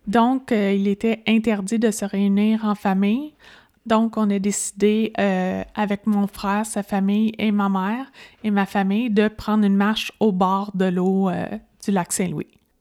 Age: 20-39